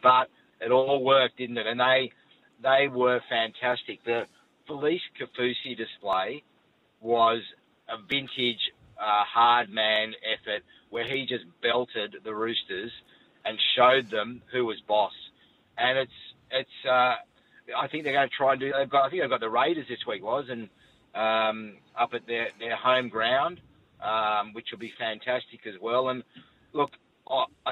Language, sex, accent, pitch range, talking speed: English, male, Australian, 115-130 Hz, 160 wpm